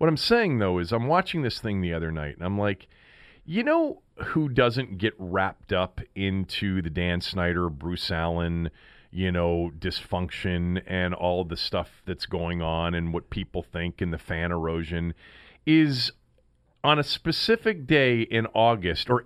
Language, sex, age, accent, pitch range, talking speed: English, male, 40-59, American, 95-155 Hz, 170 wpm